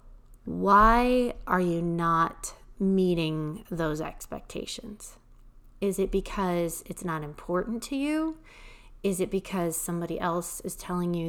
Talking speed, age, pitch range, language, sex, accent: 120 wpm, 30-49, 170-205 Hz, English, female, American